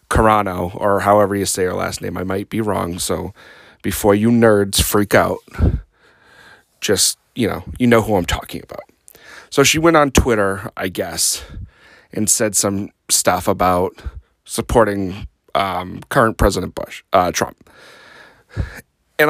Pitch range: 95-130 Hz